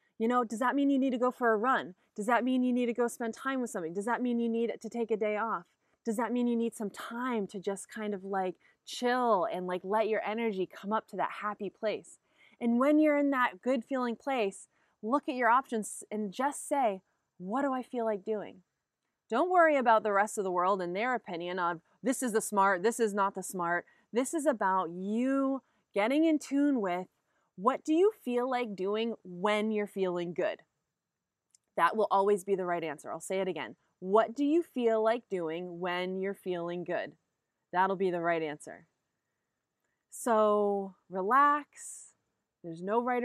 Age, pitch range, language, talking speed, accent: 20-39, 185-245 Hz, English, 205 wpm, American